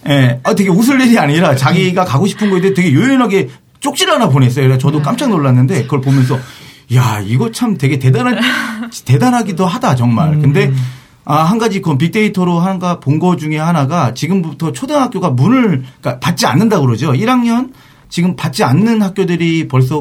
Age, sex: 40-59, male